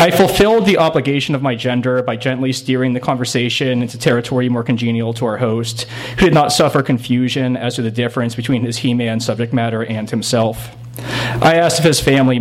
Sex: male